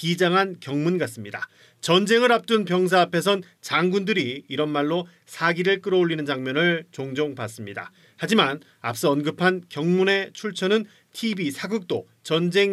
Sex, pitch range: male, 160-220 Hz